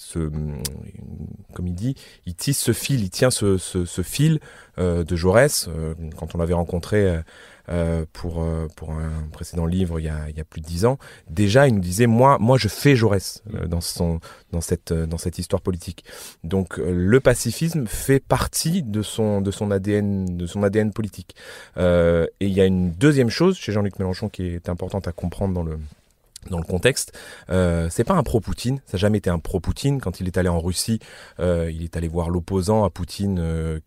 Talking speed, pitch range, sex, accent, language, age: 210 wpm, 85-110 Hz, male, French, French, 30-49